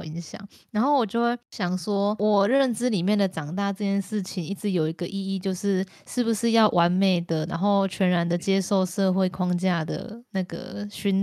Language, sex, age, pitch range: Chinese, female, 20-39, 175-210 Hz